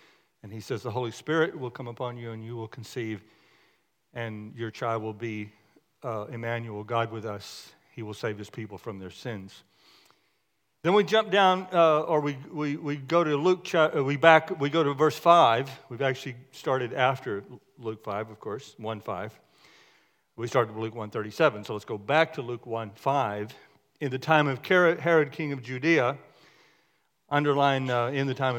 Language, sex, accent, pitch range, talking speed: English, male, American, 115-150 Hz, 180 wpm